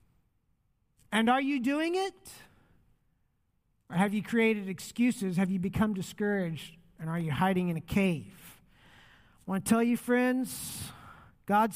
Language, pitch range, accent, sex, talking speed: English, 200-265 Hz, American, male, 145 wpm